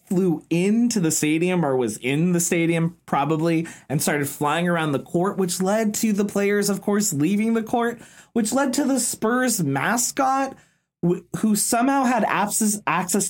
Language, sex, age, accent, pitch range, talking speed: English, male, 20-39, American, 160-220 Hz, 160 wpm